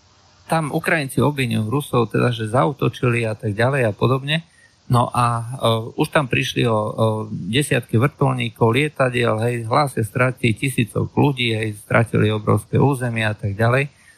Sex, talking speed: male, 140 wpm